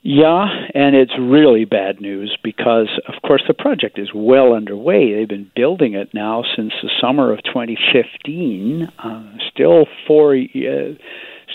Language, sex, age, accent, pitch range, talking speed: English, male, 50-69, American, 125-180 Hz, 140 wpm